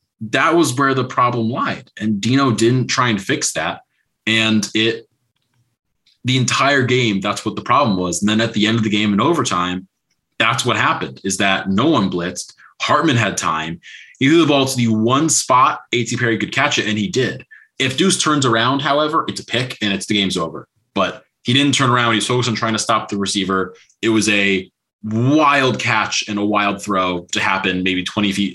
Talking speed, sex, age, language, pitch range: 210 wpm, male, 20-39, English, 95-125 Hz